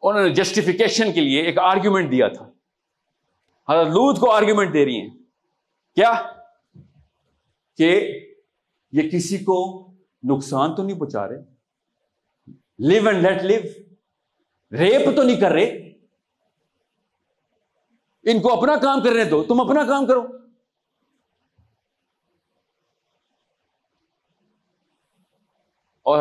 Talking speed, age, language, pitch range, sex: 105 wpm, 50-69, Urdu, 155-230 Hz, male